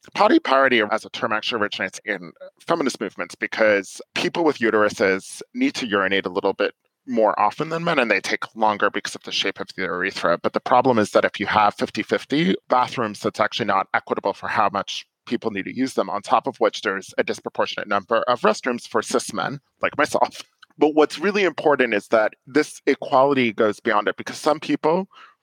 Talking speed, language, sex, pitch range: 205 wpm, English, male, 105-135 Hz